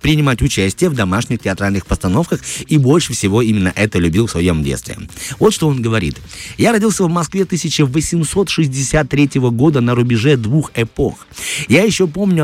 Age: 30-49